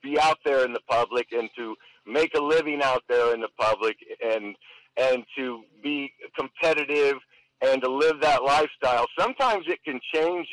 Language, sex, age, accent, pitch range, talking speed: English, male, 50-69, American, 130-165 Hz, 170 wpm